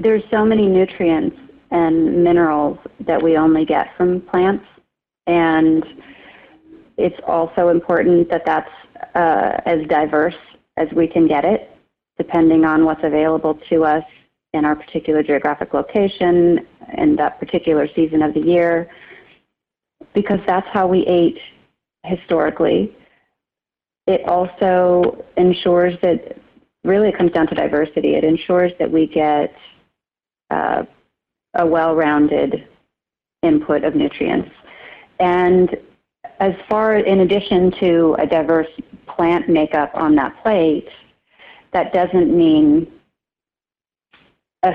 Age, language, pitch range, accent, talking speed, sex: 30-49, English, 160-195 Hz, American, 120 wpm, female